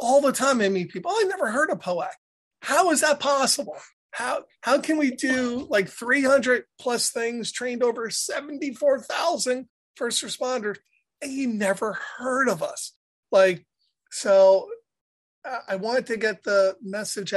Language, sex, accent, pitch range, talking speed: English, male, American, 180-250 Hz, 150 wpm